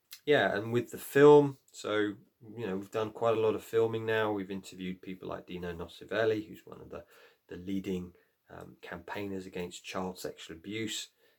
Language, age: English, 30-49